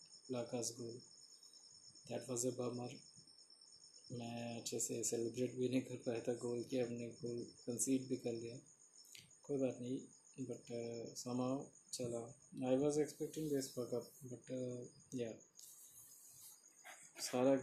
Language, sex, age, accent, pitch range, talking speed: Hindi, male, 20-39, native, 120-130 Hz, 130 wpm